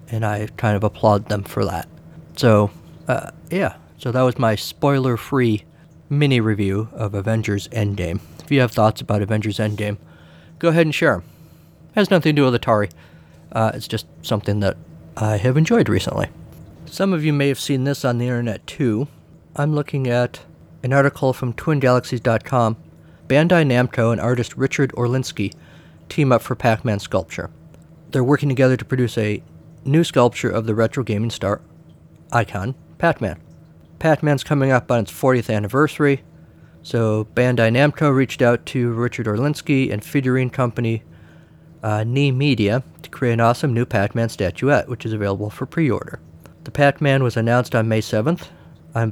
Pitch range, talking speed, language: 105-135 Hz, 165 wpm, English